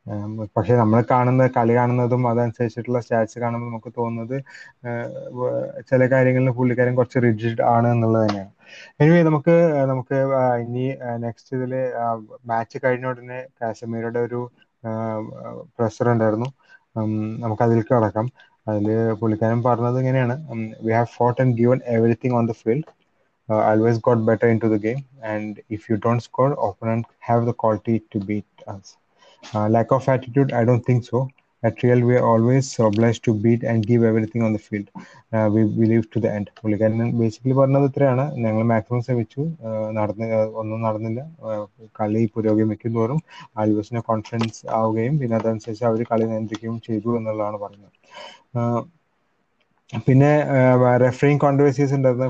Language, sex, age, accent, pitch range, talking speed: Malayalam, male, 20-39, native, 110-125 Hz, 145 wpm